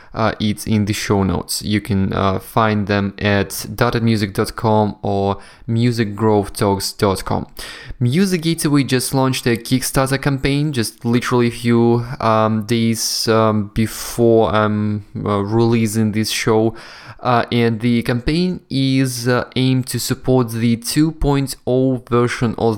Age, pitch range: 20-39, 105-125 Hz